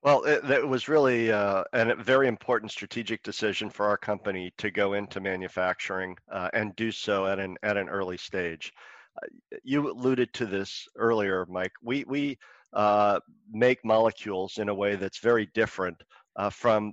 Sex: male